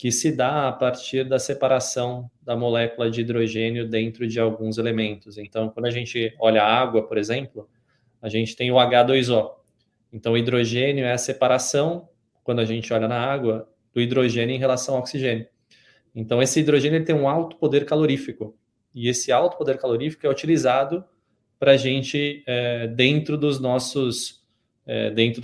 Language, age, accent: Portuguese, 20-39, Brazilian